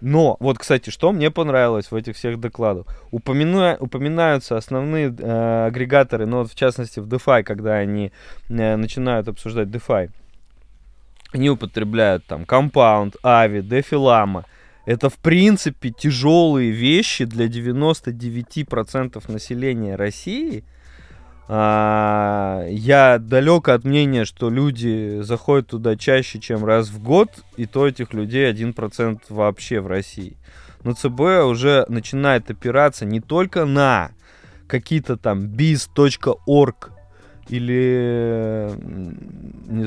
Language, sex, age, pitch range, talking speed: Russian, male, 20-39, 105-130 Hz, 115 wpm